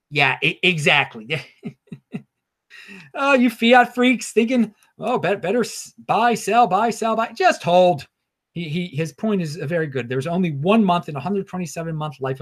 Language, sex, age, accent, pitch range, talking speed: English, male, 30-49, American, 130-200 Hz, 155 wpm